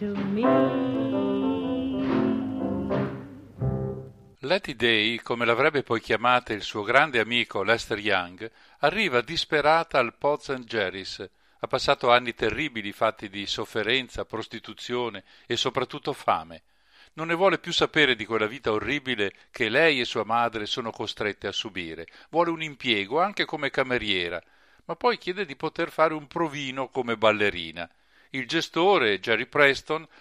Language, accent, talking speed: Italian, native, 135 wpm